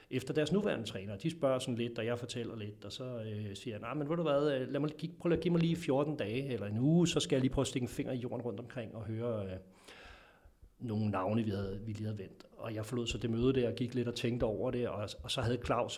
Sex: male